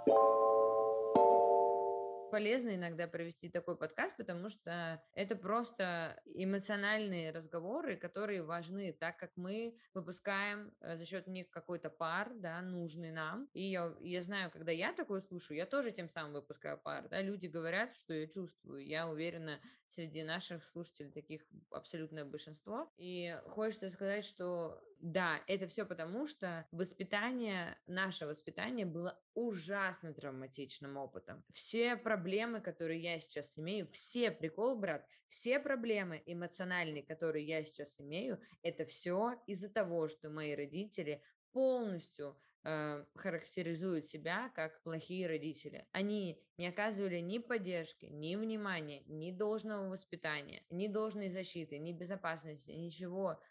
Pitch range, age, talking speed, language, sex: 160-200 Hz, 20-39, 130 wpm, Russian, female